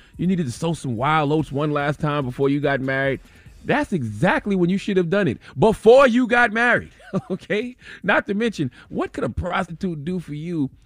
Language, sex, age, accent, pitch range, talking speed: English, male, 30-49, American, 145-210 Hz, 205 wpm